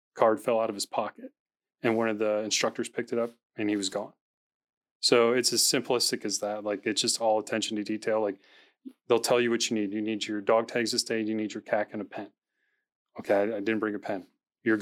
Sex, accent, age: male, American, 30-49